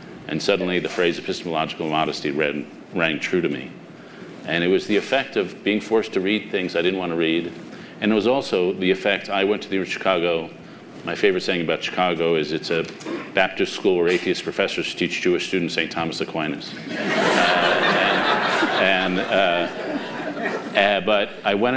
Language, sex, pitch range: English, male, 85-100 Hz